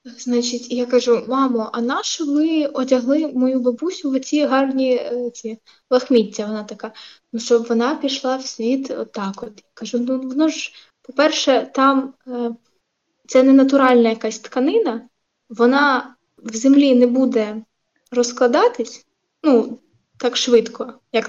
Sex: female